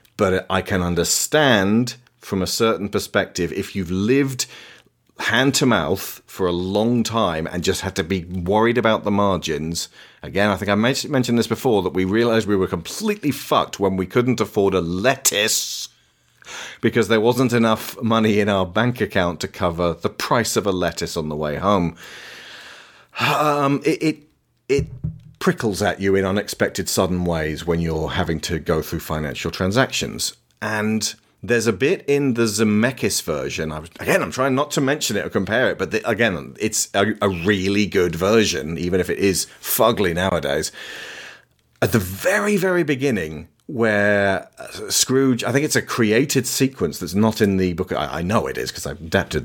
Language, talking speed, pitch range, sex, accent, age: English, 175 wpm, 90-120 Hz, male, British, 40-59